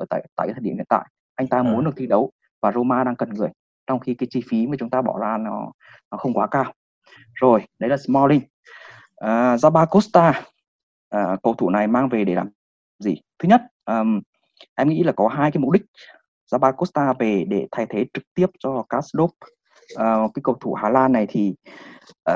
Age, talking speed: 20-39, 205 wpm